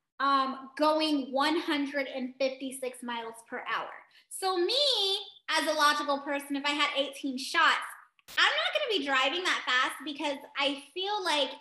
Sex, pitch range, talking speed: female, 250-310 Hz, 145 wpm